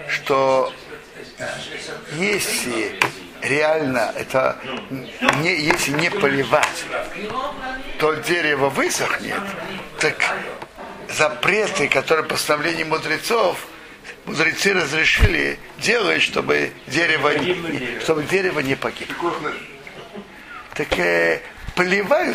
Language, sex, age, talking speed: Russian, male, 60-79, 75 wpm